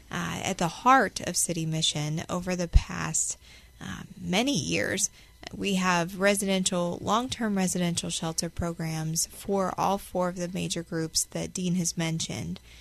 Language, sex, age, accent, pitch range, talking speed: English, female, 20-39, American, 180-220 Hz, 145 wpm